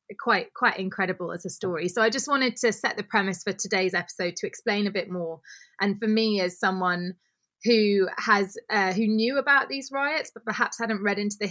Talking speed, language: 215 wpm, English